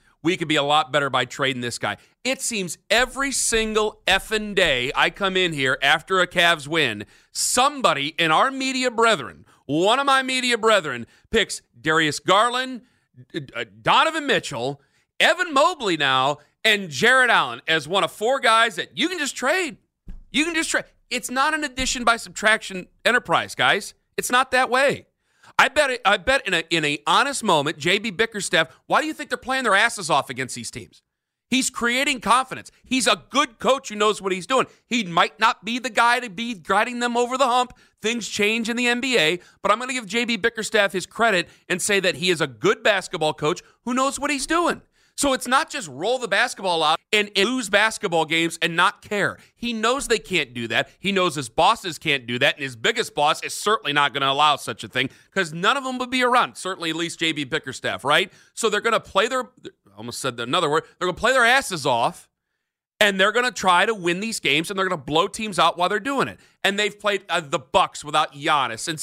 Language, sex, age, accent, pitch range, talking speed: English, male, 40-59, American, 165-245 Hz, 215 wpm